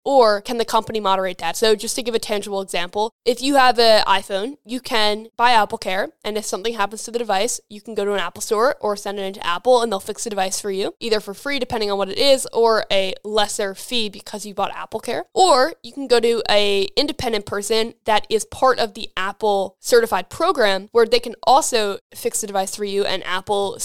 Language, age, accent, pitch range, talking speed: English, 10-29, American, 205-235 Hz, 230 wpm